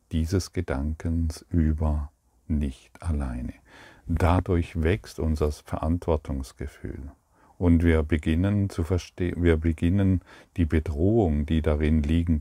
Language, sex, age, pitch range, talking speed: German, male, 40-59, 80-90 Hz, 100 wpm